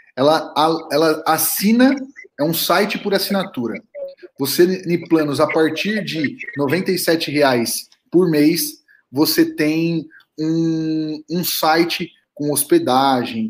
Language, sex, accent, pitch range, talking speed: Portuguese, male, Brazilian, 145-185 Hz, 110 wpm